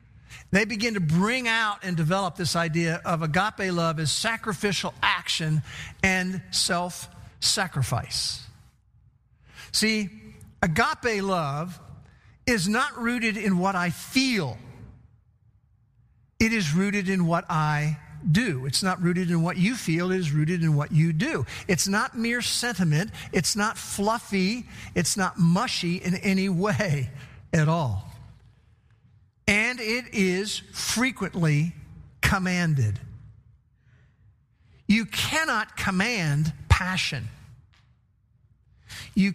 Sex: male